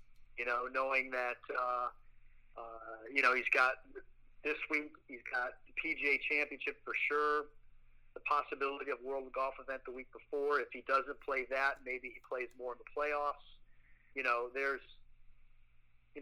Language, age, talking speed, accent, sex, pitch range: English, 40-59, 165 wpm, American, male, 125-145 Hz